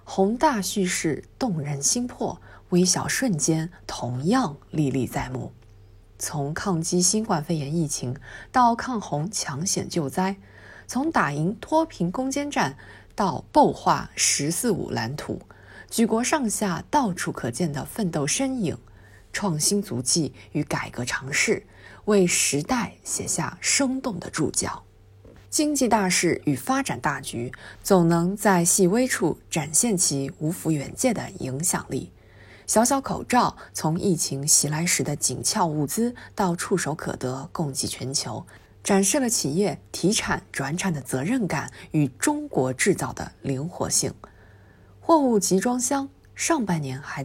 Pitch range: 135-210 Hz